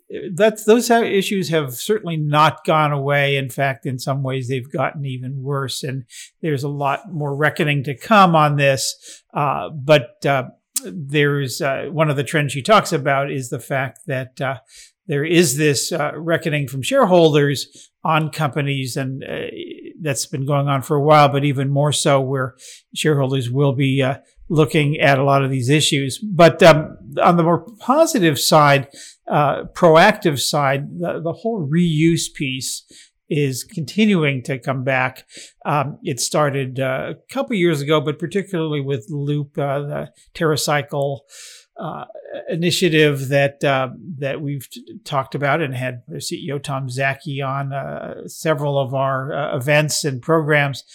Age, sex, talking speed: 50-69, male, 160 wpm